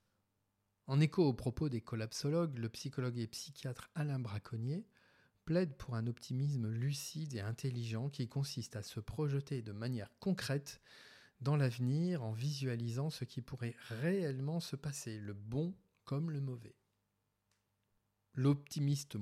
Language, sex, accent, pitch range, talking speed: English, male, French, 105-140 Hz, 135 wpm